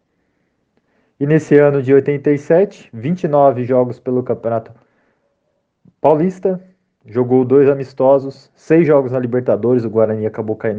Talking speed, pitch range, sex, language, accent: 115 wpm, 105-135 Hz, male, Portuguese, Brazilian